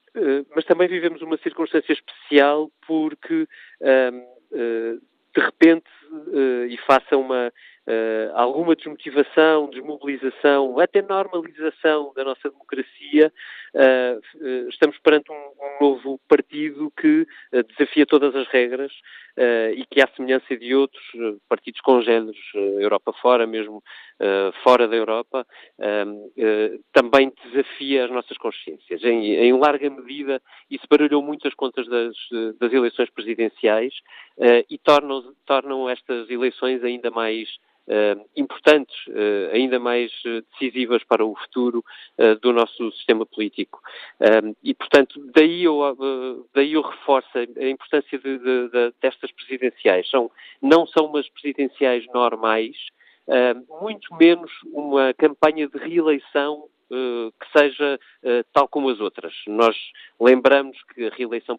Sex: male